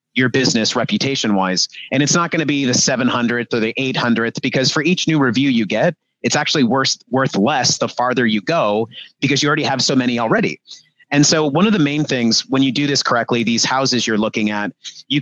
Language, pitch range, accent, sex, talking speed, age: English, 115-145 Hz, American, male, 215 wpm, 30-49